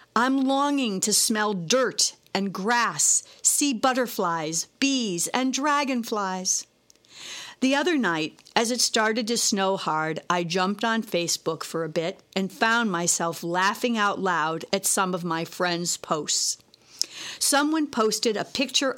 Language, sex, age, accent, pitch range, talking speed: English, female, 50-69, American, 185-260 Hz, 140 wpm